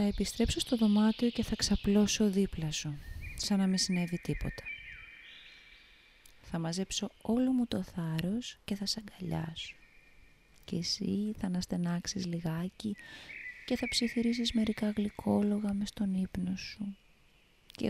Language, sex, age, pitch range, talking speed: Greek, female, 20-39, 155-205 Hz, 130 wpm